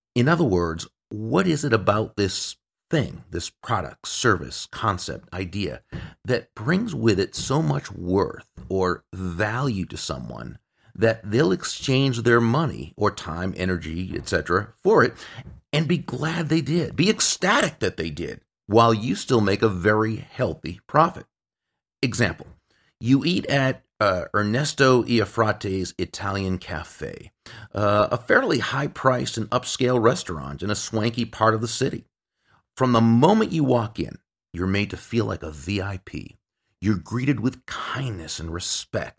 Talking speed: 145 wpm